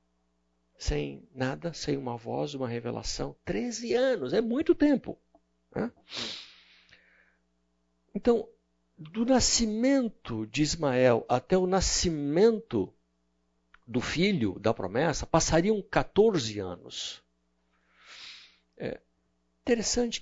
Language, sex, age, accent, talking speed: Portuguese, male, 60-79, Brazilian, 85 wpm